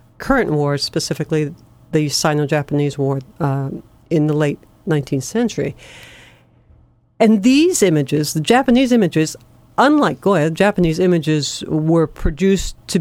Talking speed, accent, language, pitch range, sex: 115 wpm, American, English, 145-185 Hz, female